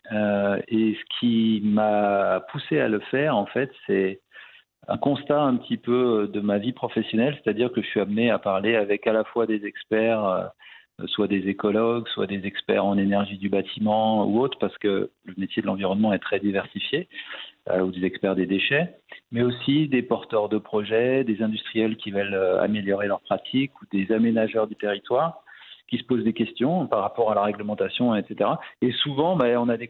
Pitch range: 105-125 Hz